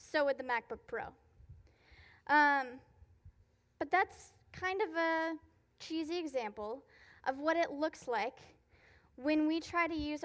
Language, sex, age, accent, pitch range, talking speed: English, female, 10-29, American, 250-325 Hz, 135 wpm